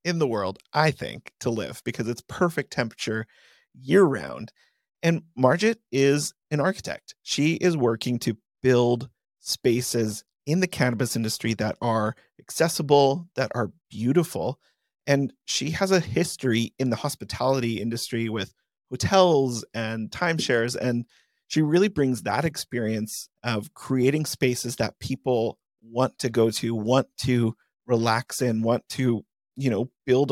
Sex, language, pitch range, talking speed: male, English, 120-145 Hz, 140 wpm